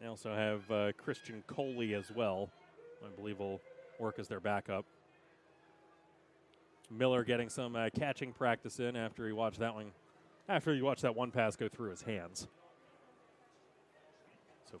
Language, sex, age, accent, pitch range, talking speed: English, male, 30-49, American, 120-165 Hz, 160 wpm